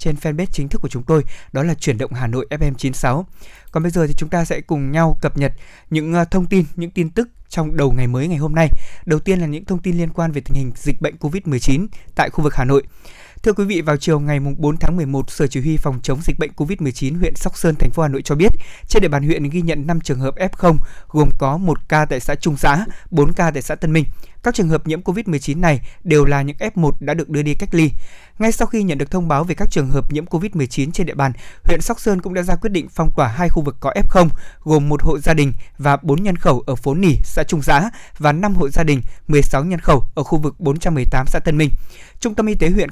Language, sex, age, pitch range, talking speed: Vietnamese, male, 20-39, 140-175 Hz, 265 wpm